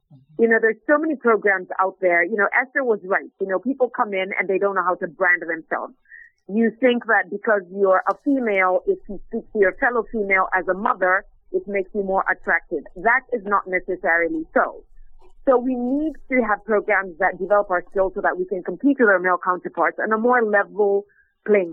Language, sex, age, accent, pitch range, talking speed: English, female, 40-59, American, 190-250 Hz, 215 wpm